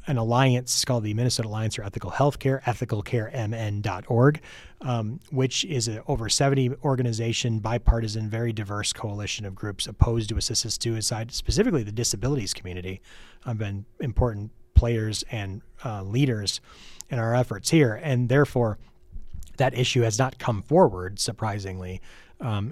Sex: male